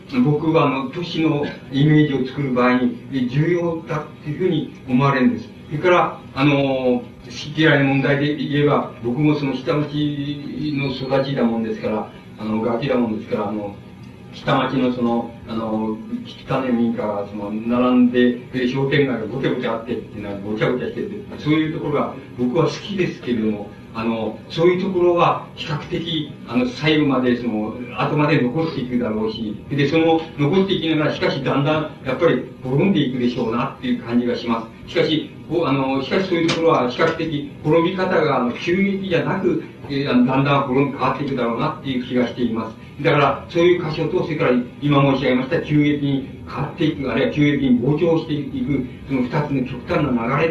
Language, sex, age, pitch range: Japanese, male, 40-59, 120-155 Hz